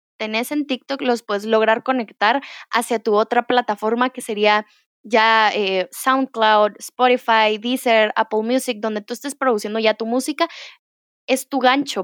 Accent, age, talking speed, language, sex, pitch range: Mexican, 10-29, 150 wpm, Spanish, female, 215-260 Hz